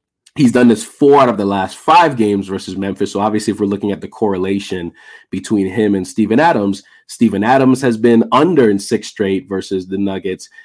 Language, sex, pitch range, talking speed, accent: English, male, 95-115 Hz, 205 wpm, American